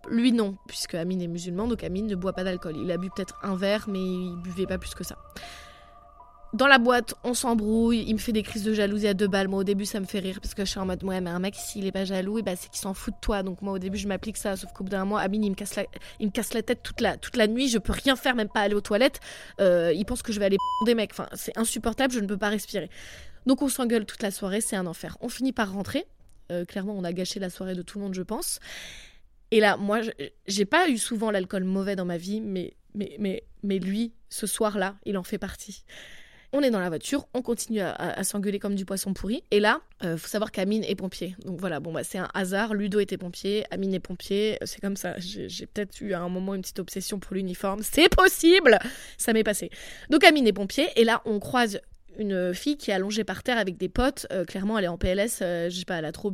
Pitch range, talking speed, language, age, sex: 190-225 Hz, 280 wpm, French, 20-39, female